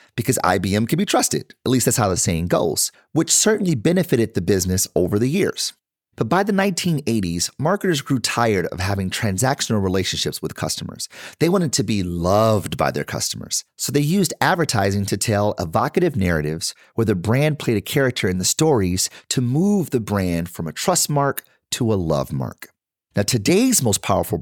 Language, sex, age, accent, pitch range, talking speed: English, male, 30-49, American, 100-145 Hz, 180 wpm